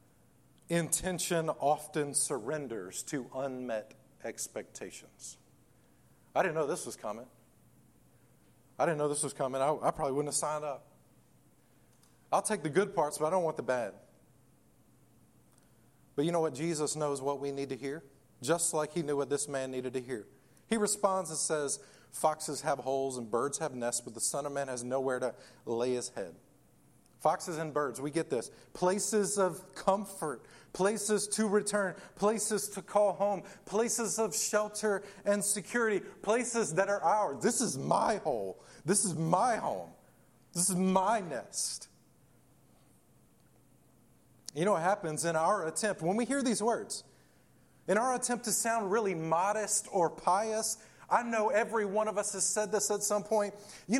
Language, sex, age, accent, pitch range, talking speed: English, male, 40-59, American, 145-210 Hz, 165 wpm